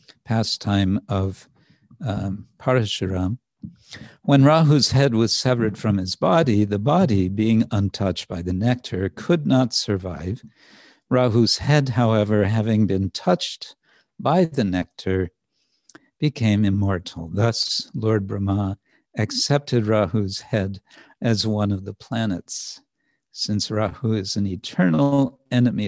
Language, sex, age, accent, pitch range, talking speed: English, male, 60-79, American, 100-125 Hz, 115 wpm